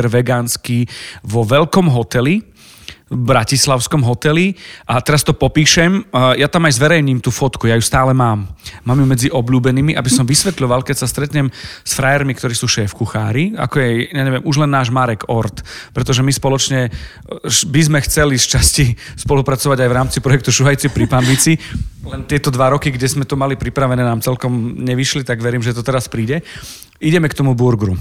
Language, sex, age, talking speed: Slovak, male, 40-59, 180 wpm